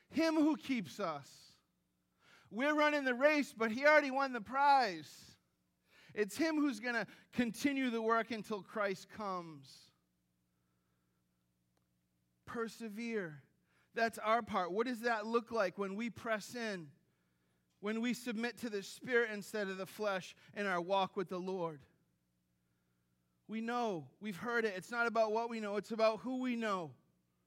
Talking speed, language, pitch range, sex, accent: 155 wpm, English, 185-240 Hz, male, American